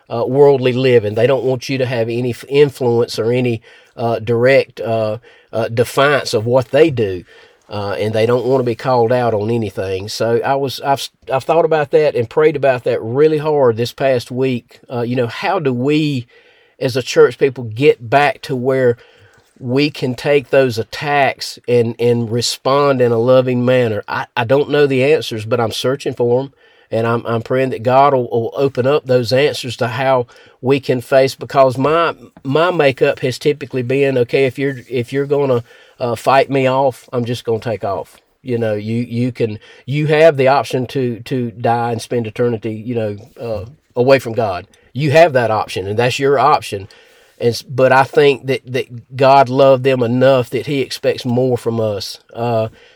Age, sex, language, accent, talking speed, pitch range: 40-59, male, English, American, 195 wpm, 120-140 Hz